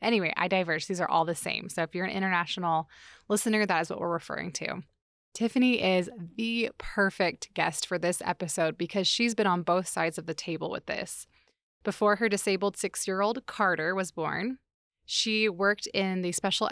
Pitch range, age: 175-210 Hz, 20-39